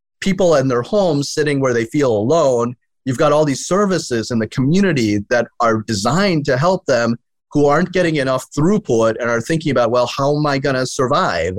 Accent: American